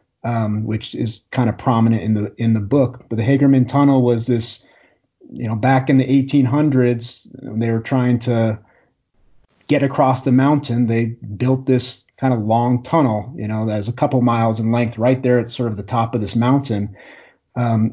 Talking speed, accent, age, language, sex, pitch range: 195 wpm, American, 30-49, English, male, 110-130 Hz